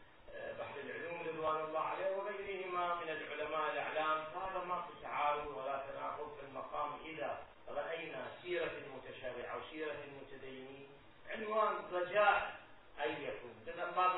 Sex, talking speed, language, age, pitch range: male, 120 wpm, Arabic, 40-59, 135-170 Hz